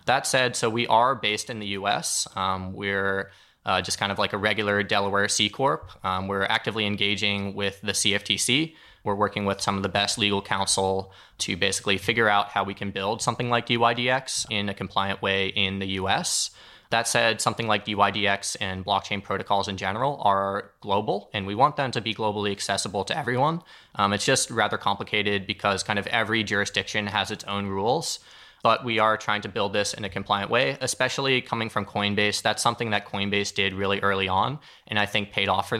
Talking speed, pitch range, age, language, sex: 200 wpm, 100-110 Hz, 20-39, English, male